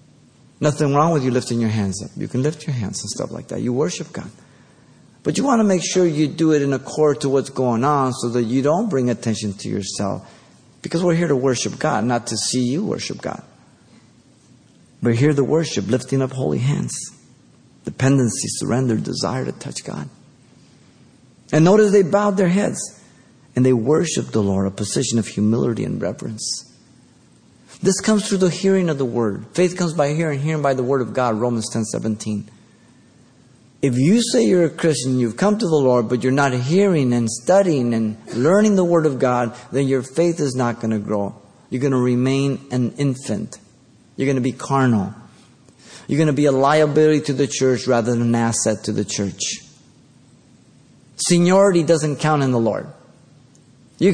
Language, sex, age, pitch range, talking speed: English, male, 50-69, 120-155 Hz, 190 wpm